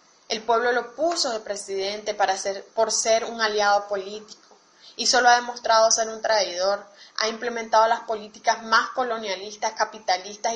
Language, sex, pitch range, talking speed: Spanish, female, 205-230 Hz, 155 wpm